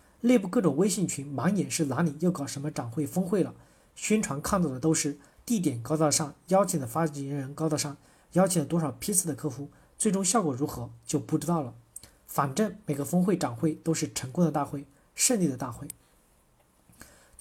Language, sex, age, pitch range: Chinese, male, 40-59, 145-180 Hz